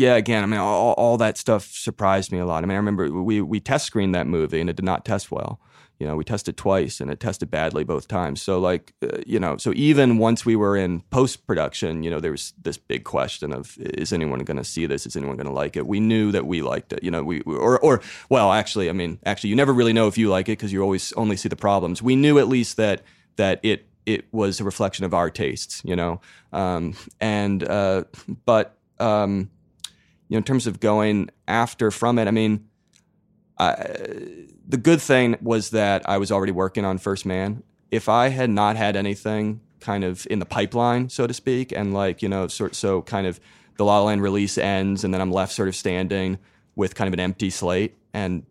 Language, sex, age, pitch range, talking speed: English, male, 30-49, 95-115 Hz, 230 wpm